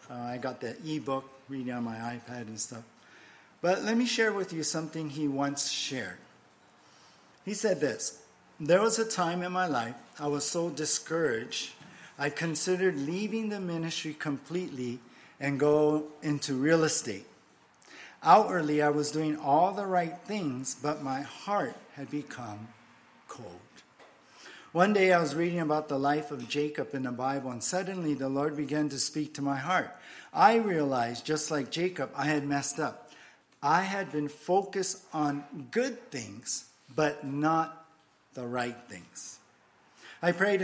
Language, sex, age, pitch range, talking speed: English, male, 50-69, 135-170 Hz, 160 wpm